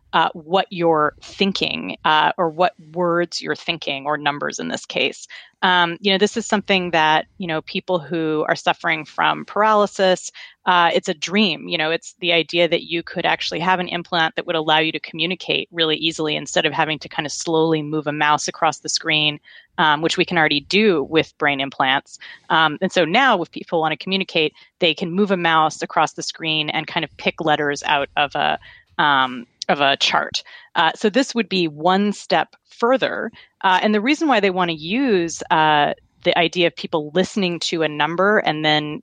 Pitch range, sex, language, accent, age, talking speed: 155-185 Hz, female, English, American, 30-49, 205 wpm